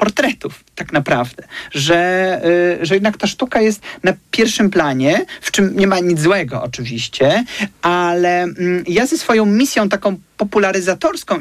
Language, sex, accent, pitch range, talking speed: Polish, male, native, 175-220 Hz, 135 wpm